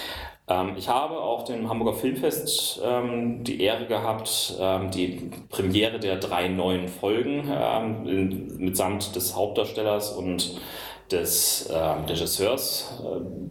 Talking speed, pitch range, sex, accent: 95 wpm, 95-125 Hz, male, German